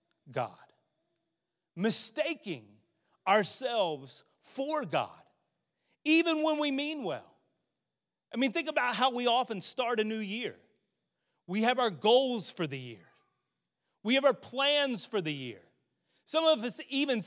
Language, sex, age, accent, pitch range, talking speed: English, male, 40-59, American, 195-275 Hz, 135 wpm